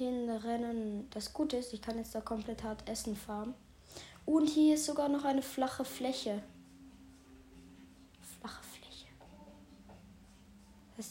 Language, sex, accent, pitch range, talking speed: English, female, German, 165-235 Hz, 125 wpm